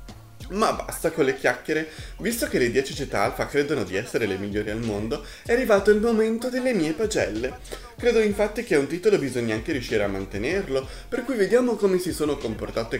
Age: 30-49